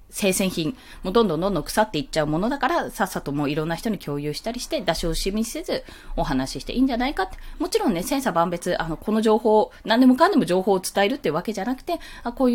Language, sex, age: Japanese, female, 20-39